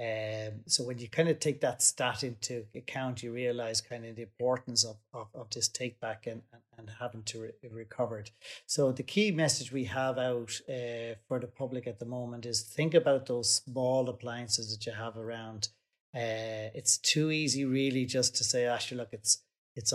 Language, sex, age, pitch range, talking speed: English, male, 30-49, 115-130 Hz, 200 wpm